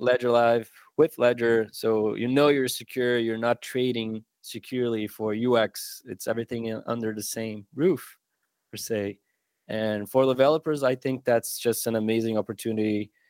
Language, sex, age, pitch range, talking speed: English, male, 20-39, 110-125 Hz, 150 wpm